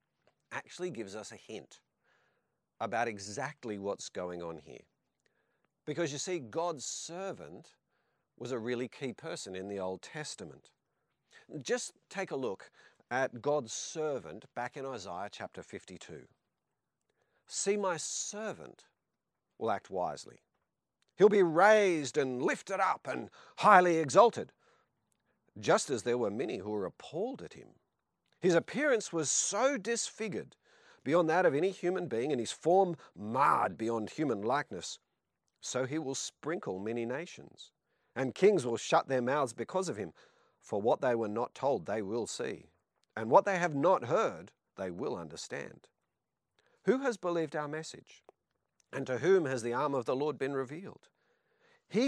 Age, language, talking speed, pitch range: 50-69, English, 150 wpm, 120-190 Hz